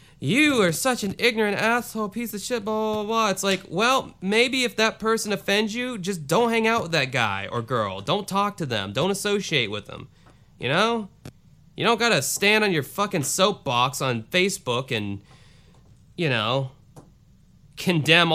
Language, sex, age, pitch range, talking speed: English, male, 20-39, 130-200 Hz, 175 wpm